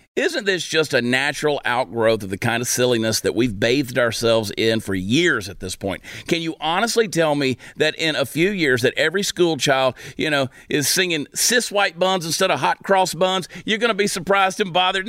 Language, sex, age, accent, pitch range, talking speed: English, male, 40-59, American, 130-185 Hz, 215 wpm